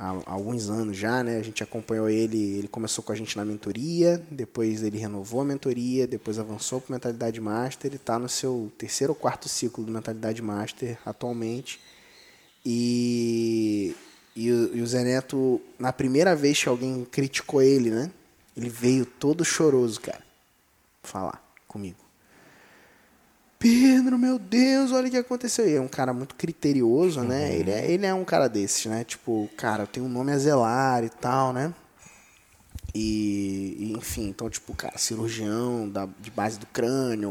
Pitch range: 105-130 Hz